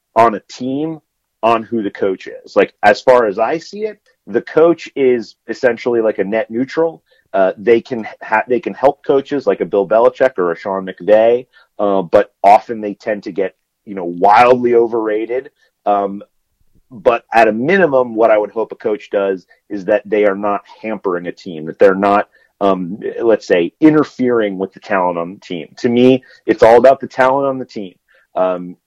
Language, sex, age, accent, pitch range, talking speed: English, male, 40-59, American, 100-135 Hz, 195 wpm